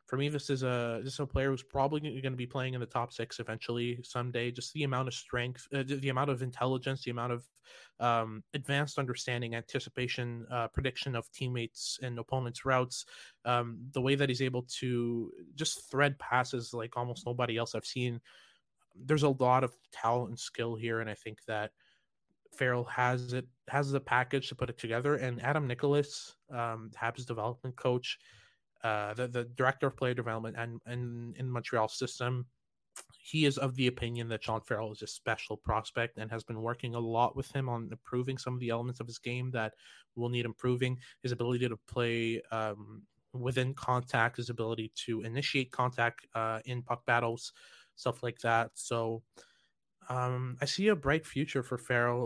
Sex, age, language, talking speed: male, 20-39, English, 185 wpm